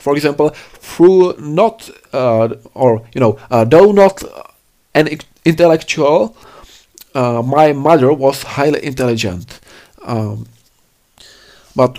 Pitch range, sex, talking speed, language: 125-160 Hz, male, 105 wpm, Czech